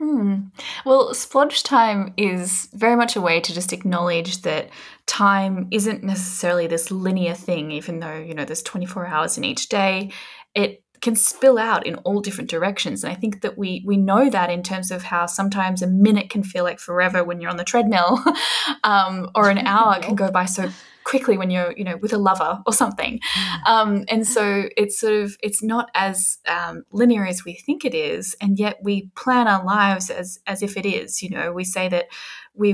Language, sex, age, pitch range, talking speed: English, female, 10-29, 180-225 Hz, 205 wpm